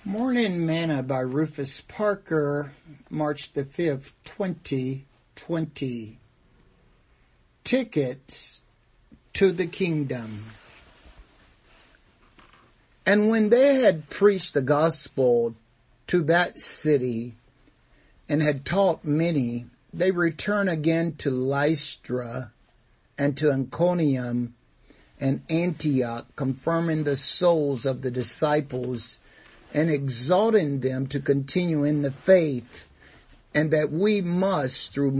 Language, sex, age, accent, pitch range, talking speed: English, male, 60-79, American, 130-165 Hz, 95 wpm